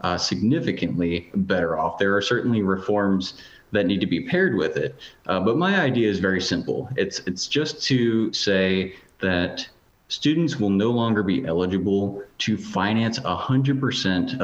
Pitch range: 90-120 Hz